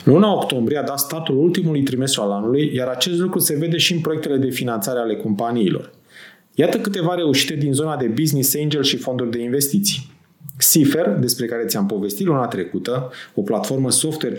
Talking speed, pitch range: 180 wpm, 125-175 Hz